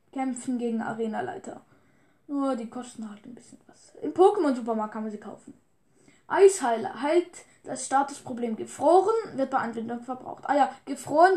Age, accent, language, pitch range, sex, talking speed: 10-29, German, German, 235-315 Hz, female, 150 wpm